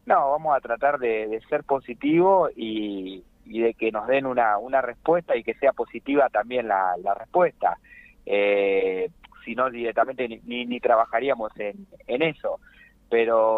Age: 30-49